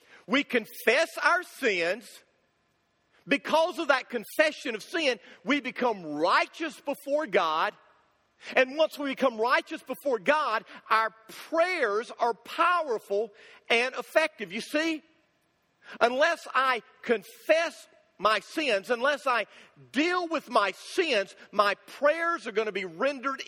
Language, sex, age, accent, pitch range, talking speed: English, male, 50-69, American, 220-295 Hz, 125 wpm